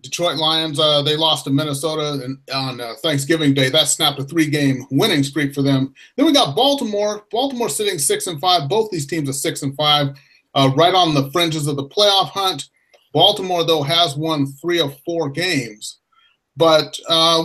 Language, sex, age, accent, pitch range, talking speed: English, male, 30-49, American, 140-185 Hz, 185 wpm